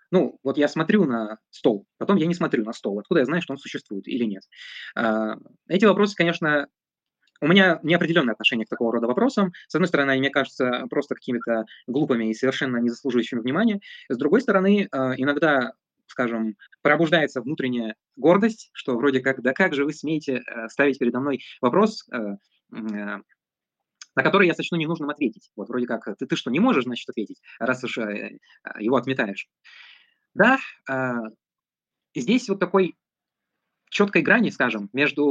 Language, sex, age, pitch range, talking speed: Russian, male, 20-39, 120-175 Hz, 155 wpm